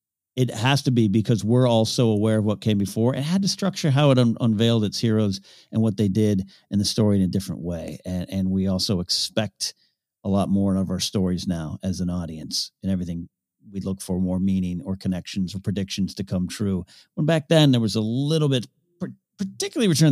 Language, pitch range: English, 95-125 Hz